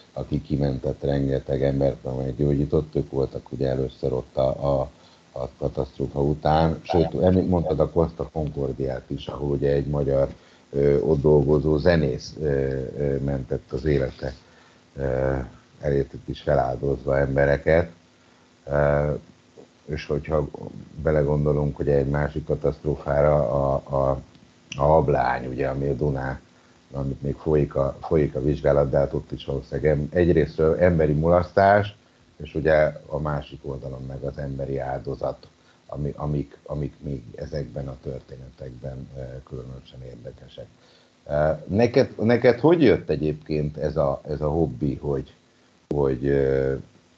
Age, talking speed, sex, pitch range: 60-79, 125 wpm, male, 70-75 Hz